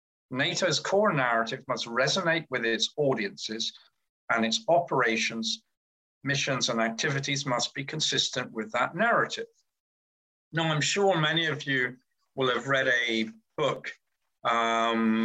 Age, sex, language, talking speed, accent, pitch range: 50-69, male, English, 125 wpm, British, 115-165 Hz